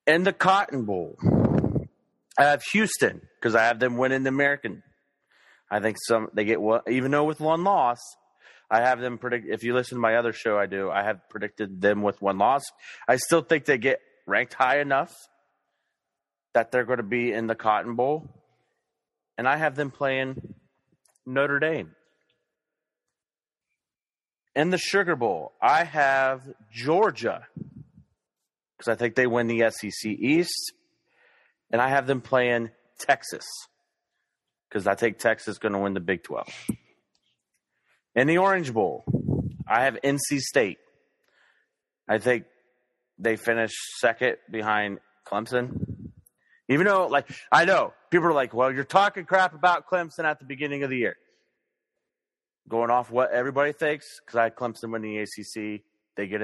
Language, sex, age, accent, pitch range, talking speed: English, male, 30-49, American, 115-155 Hz, 160 wpm